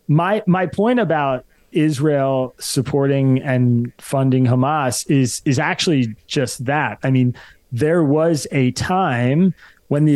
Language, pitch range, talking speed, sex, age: English, 130-155 Hz, 130 wpm, male, 30-49